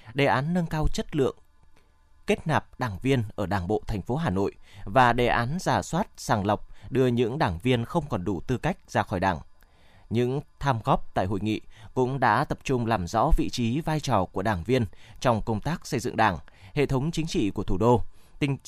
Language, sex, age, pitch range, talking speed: Vietnamese, male, 20-39, 110-145 Hz, 220 wpm